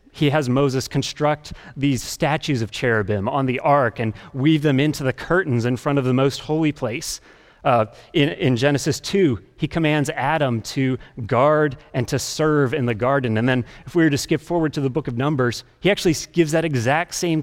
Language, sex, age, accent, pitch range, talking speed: English, male, 30-49, American, 120-155 Hz, 205 wpm